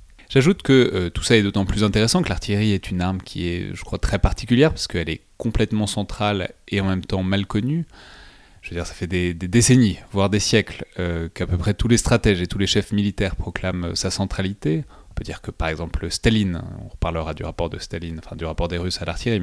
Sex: male